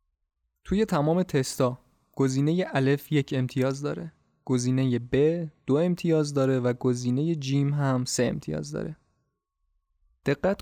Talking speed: 120 wpm